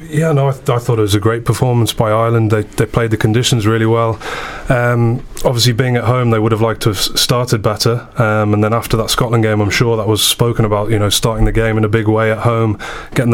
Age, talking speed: 20-39, 260 wpm